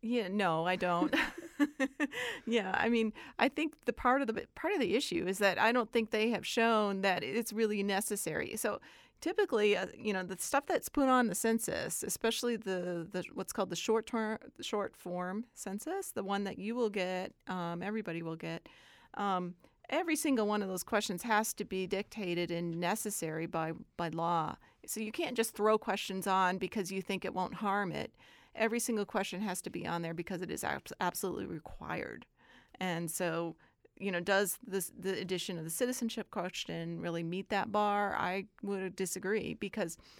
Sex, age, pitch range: female, 40-59, 180-225 Hz